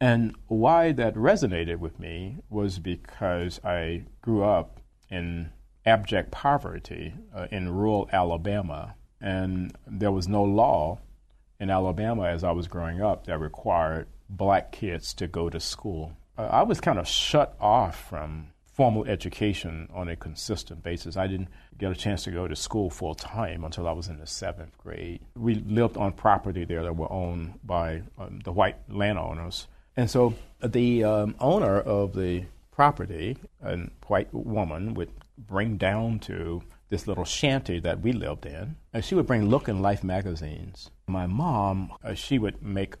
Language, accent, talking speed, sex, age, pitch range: English, American, 165 wpm, male, 40-59, 85-105 Hz